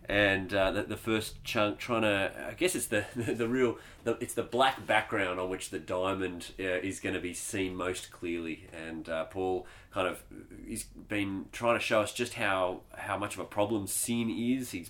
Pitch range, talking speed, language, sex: 90-115 Hz, 205 wpm, English, male